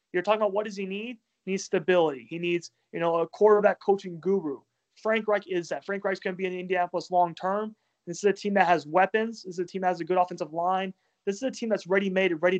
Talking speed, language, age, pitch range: 270 wpm, English, 20-39, 170-205 Hz